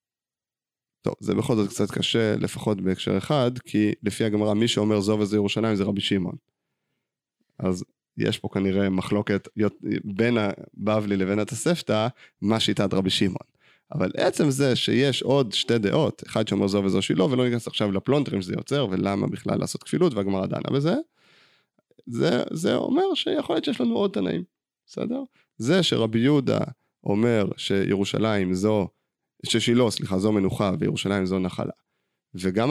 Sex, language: male, Hebrew